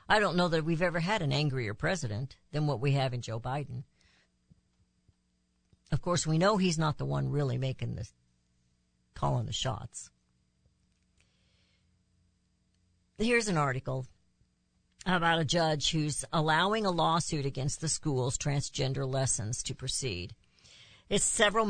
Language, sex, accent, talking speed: English, female, American, 140 wpm